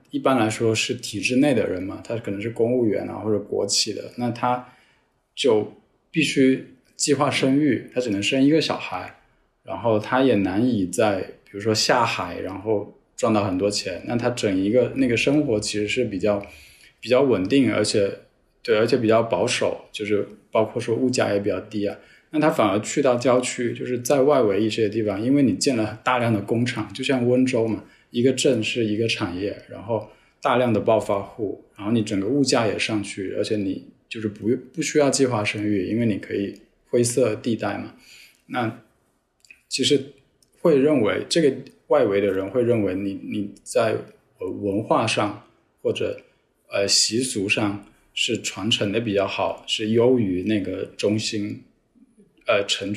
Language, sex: Chinese, male